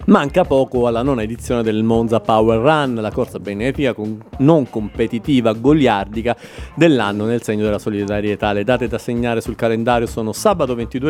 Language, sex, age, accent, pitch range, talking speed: Italian, male, 40-59, native, 110-135 Hz, 155 wpm